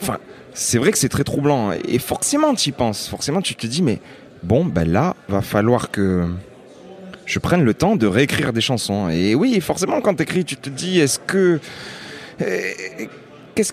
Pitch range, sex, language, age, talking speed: 105-145 Hz, male, French, 30-49, 190 wpm